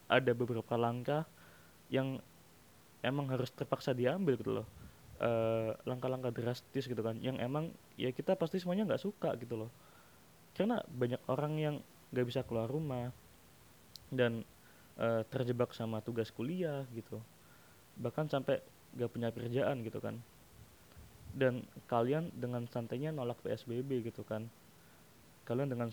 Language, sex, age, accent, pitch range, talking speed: Indonesian, male, 20-39, native, 115-135 Hz, 130 wpm